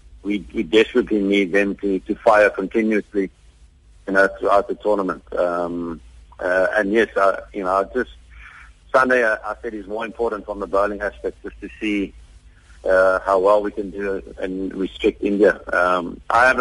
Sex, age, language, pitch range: male, 50-69, English, 90-110 Hz